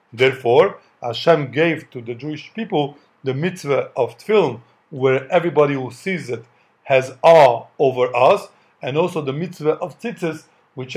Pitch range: 140-175 Hz